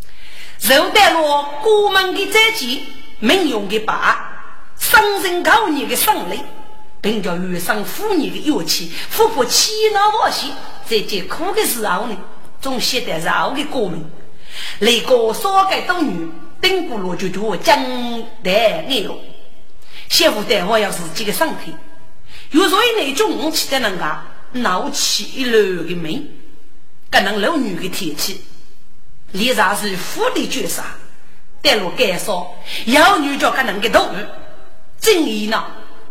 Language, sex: Chinese, female